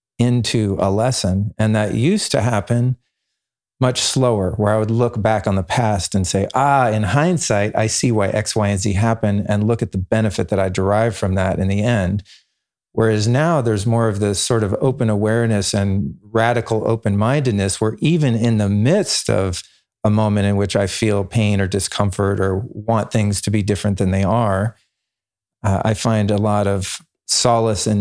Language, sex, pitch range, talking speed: English, male, 100-115 Hz, 195 wpm